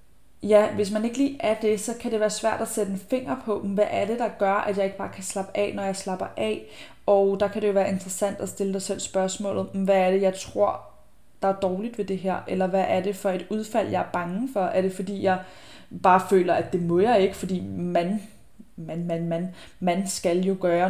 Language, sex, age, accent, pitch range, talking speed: Danish, female, 20-39, native, 180-195 Hz, 240 wpm